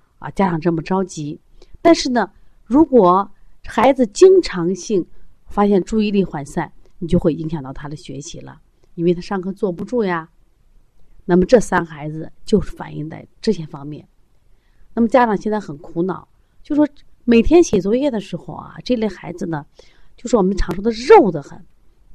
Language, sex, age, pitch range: Chinese, female, 30-49, 160-225 Hz